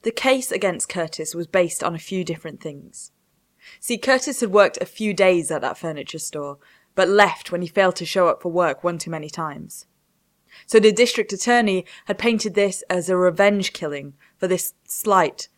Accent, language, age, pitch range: British, English, 20-39, 165-210 Hz